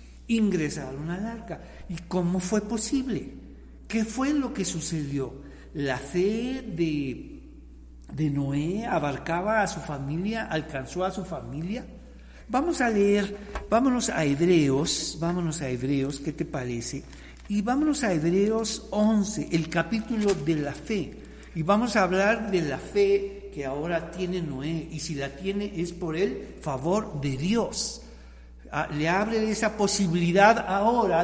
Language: Spanish